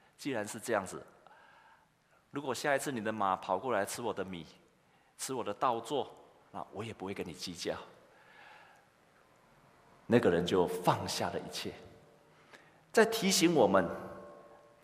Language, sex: Chinese, male